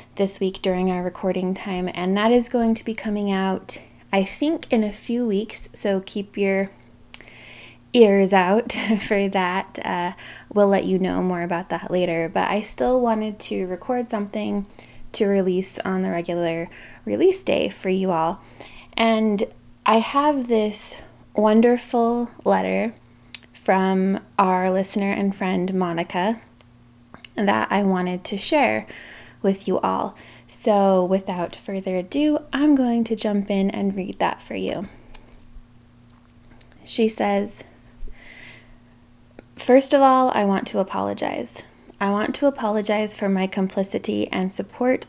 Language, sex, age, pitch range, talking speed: English, female, 20-39, 180-215 Hz, 140 wpm